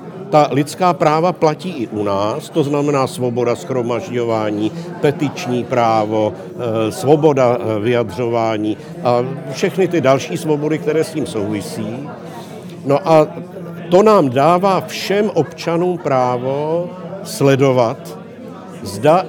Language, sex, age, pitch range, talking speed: Slovak, male, 50-69, 130-175 Hz, 105 wpm